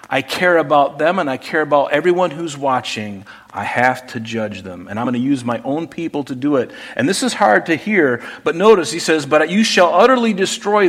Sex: male